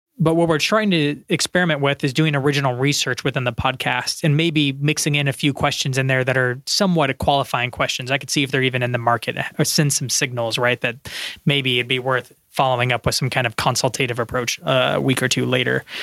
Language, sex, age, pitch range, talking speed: English, male, 20-39, 130-160 Hz, 230 wpm